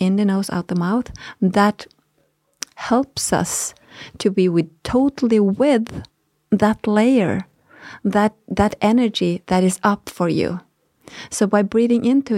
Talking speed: 135 wpm